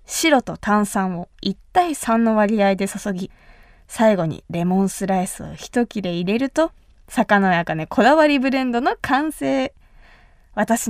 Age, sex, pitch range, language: 20-39, female, 200-275 Hz, Japanese